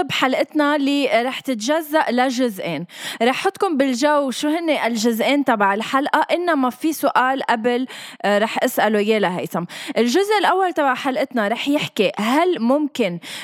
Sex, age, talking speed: female, 20-39, 130 wpm